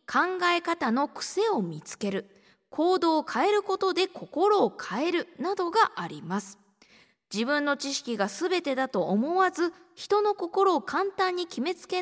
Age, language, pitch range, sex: 20-39, Japanese, 225-370 Hz, female